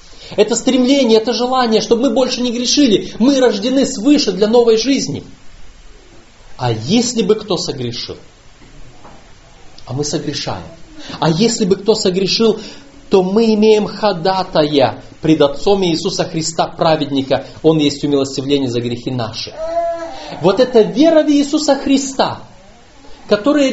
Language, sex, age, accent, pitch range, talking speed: Russian, male, 40-59, native, 130-220 Hz, 125 wpm